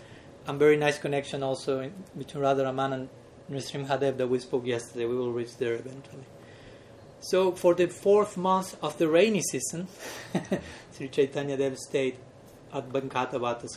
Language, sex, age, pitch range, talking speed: English, male, 30-49, 130-160 Hz, 150 wpm